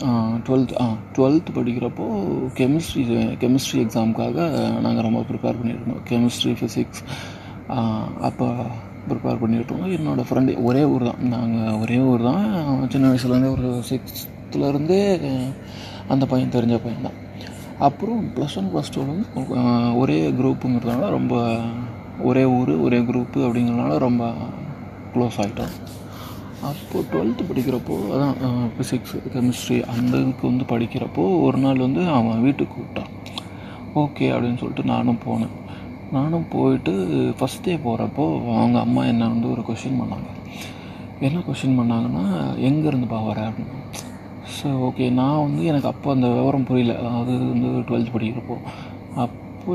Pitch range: 115-130 Hz